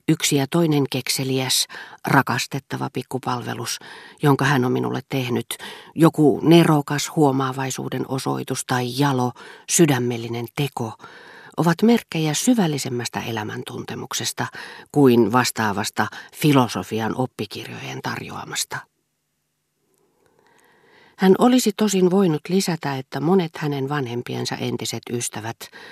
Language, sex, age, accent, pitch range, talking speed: Finnish, female, 40-59, native, 115-160 Hz, 90 wpm